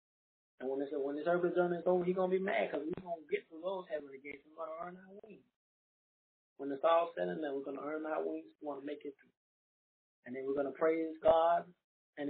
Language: English